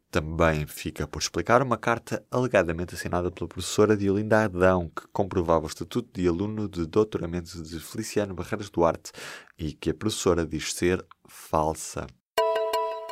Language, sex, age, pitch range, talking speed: Portuguese, male, 20-39, 85-115 Hz, 140 wpm